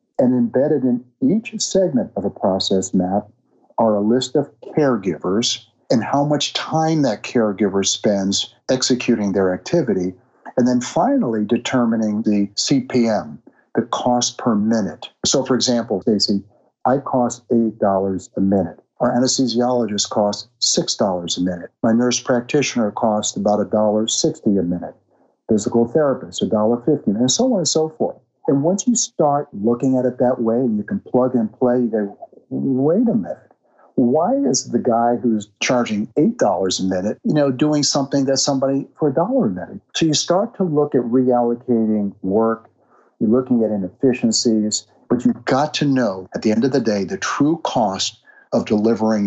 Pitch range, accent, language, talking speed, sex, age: 105-140 Hz, American, English, 165 wpm, male, 50-69